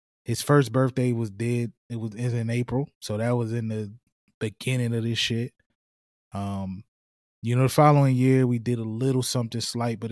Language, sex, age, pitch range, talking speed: English, male, 20-39, 105-125 Hz, 185 wpm